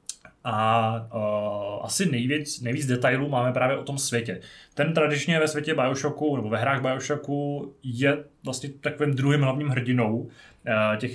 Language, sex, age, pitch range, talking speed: Czech, male, 20-39, 115-145 Hz, 140 wpm